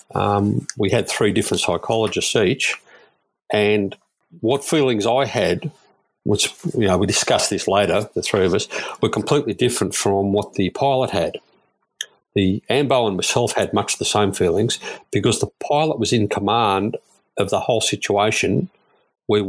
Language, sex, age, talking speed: English, male, 50-69, 155 wpm